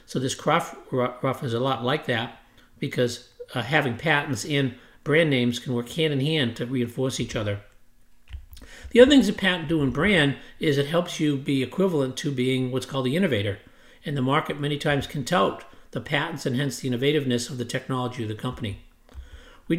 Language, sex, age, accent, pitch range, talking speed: English, male, 50-69, American, 120-150 Hz, 195 wpm